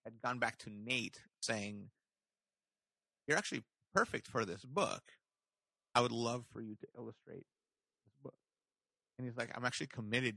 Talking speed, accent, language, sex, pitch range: 155 wpm, American, English, male, 105-120 Hz